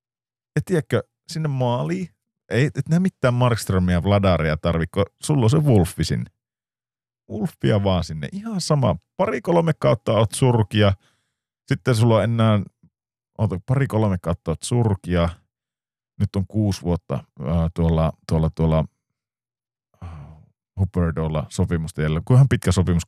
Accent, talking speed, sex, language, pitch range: native, 120 wpm, male, Finnish, 85-120 Hz